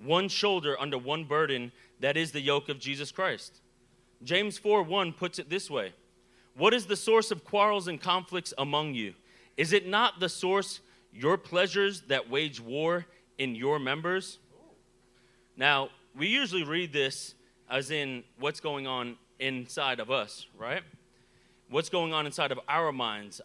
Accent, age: American, 30-49